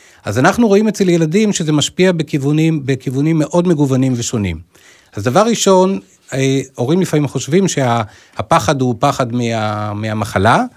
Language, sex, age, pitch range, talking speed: Hebrew, male, 40-59, 125-165 Hz, 135 wpm